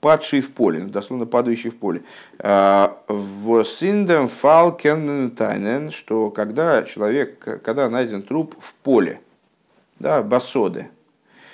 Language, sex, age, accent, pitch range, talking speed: Russian, male, 50-69, native, 110-145 Hz, 100 wpm